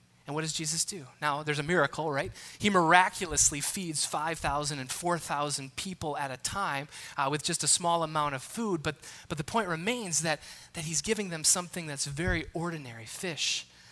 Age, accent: 20-39, American